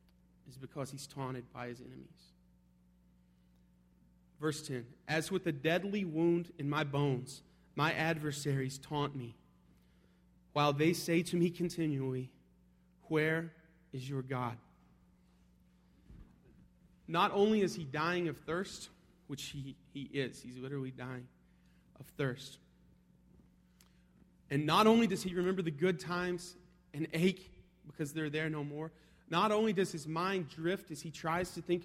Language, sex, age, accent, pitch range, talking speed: English, male, 30-49, American, 125-170 Hz, 140 wpm